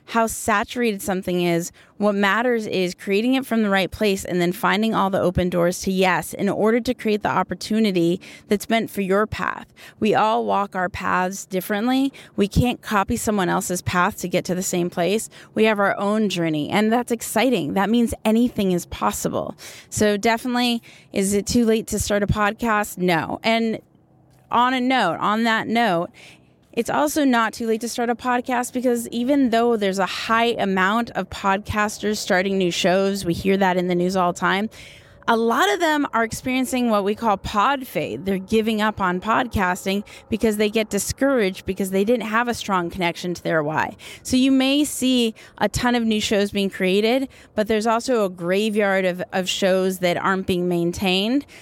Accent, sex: American, female